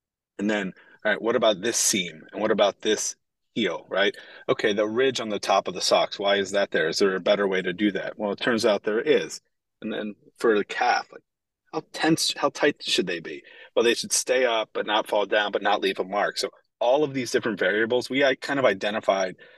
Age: 30-49